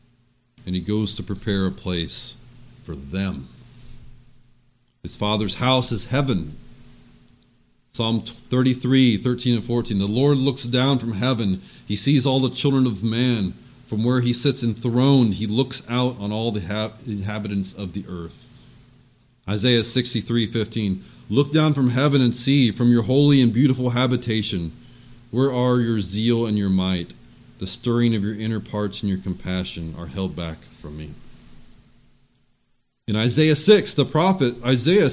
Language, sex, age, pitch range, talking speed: English, male, 30-49, 105-130 Hz, 150 wpm